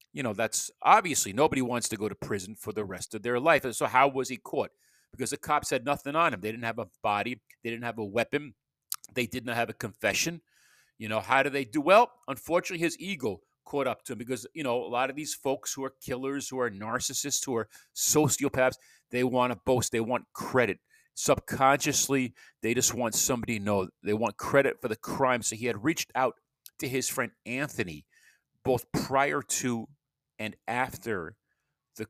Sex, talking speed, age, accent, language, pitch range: male, 210 wpm, 40-59, American, English, 115-145 Hz